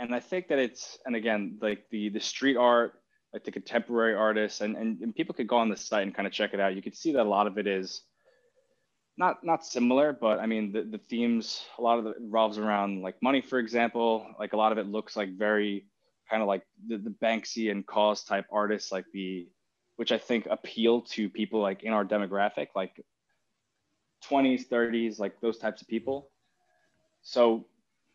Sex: male